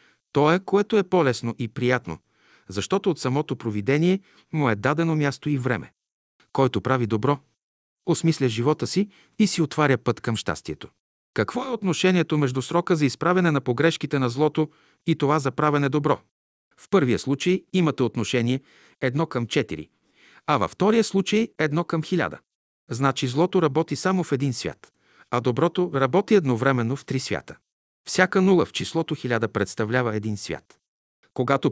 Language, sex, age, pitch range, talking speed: Bulgarian, male, 50-69, 120-170 Hz, 155 wpm